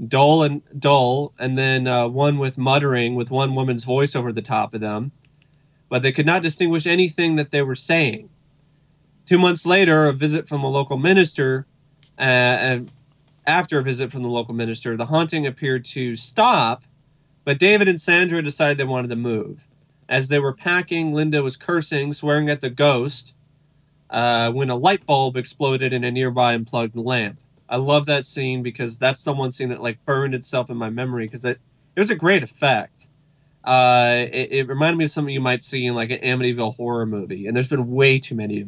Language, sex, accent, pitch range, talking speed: English, male, American, 125-150 Hz, 200 wpm